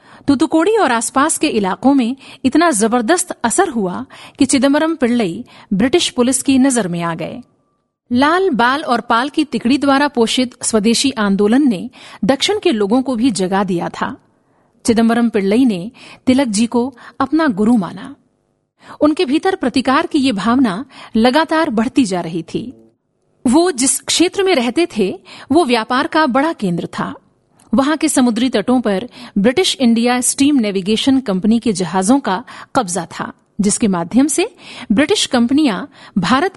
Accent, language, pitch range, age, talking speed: native, Hindi, 220-280 Hz, 50-69, 150 wpm